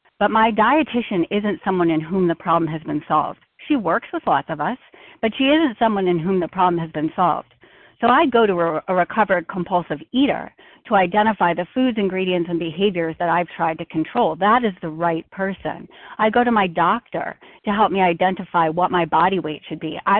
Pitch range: 175-230 Hz